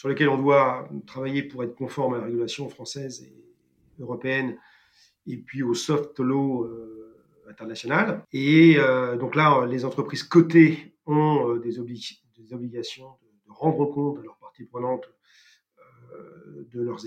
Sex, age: male, 40-59